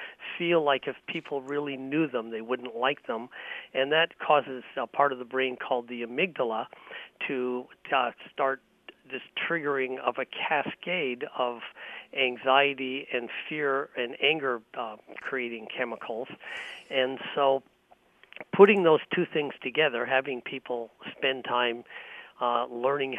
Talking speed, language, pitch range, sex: 135 wpm, English, 125-145 Hz, male